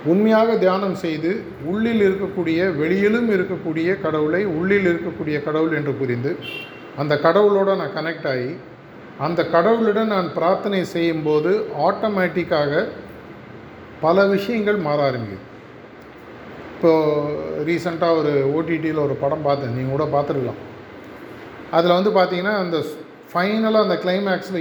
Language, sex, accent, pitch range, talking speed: Tamil, male, native, 155-195 Hz, 105 wpm